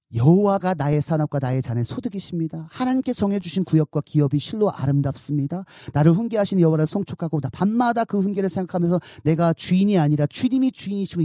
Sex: male